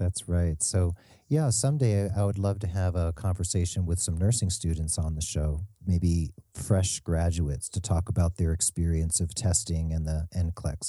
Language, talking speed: English, 175 wpm